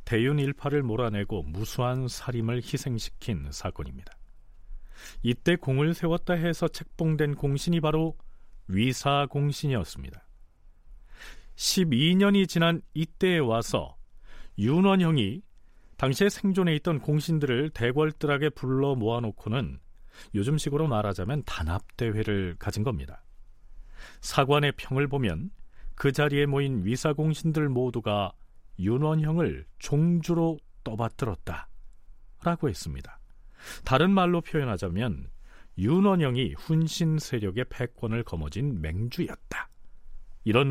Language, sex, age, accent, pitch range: Korean, male, 40-59, native, 110-155 Hz